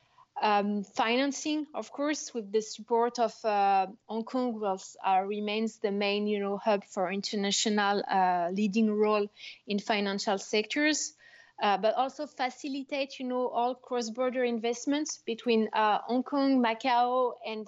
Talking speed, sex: 145 wpm, female